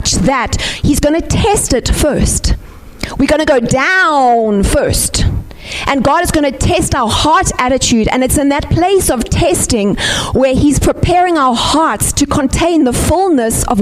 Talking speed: 170 wpm